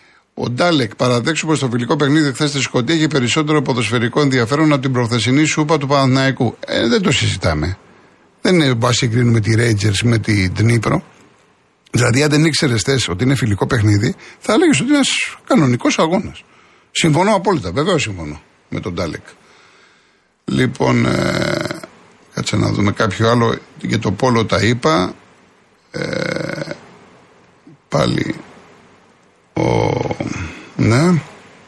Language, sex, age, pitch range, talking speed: Greek, male, 50-69, 110-140 Hz, 135 wpm